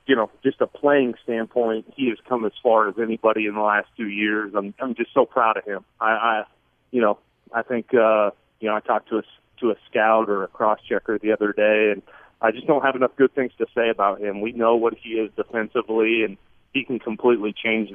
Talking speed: 235 wpm